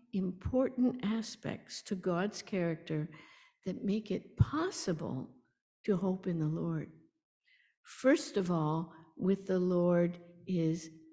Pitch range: 175-235 Hz